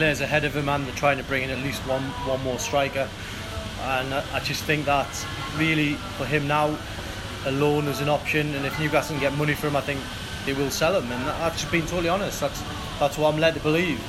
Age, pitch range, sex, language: 20-39, 125-155 Hz, male, English